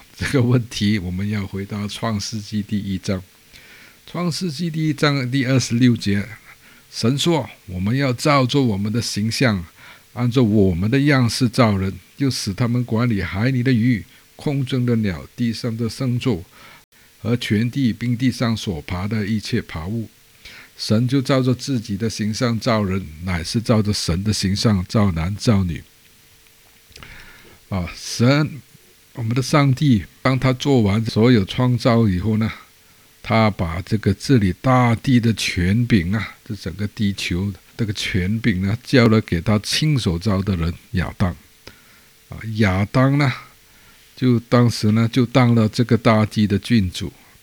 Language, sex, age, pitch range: Chinese, male, 50-69, 95-120 Hz